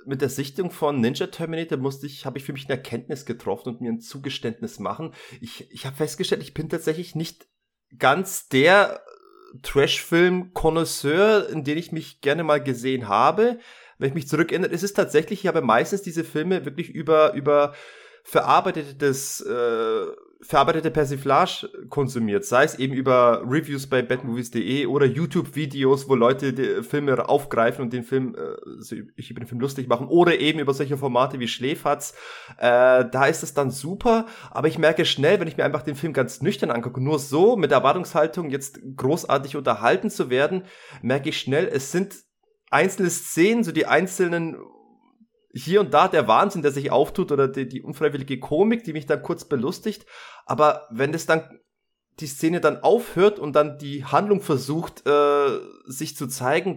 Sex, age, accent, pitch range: male, 30-49, German, 135-175 Hz